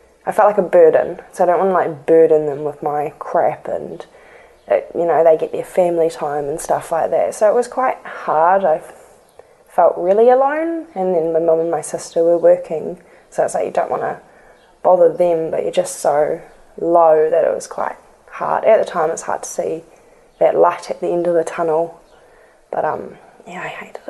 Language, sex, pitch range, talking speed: English, female, 165-280 Hz, 215 wpm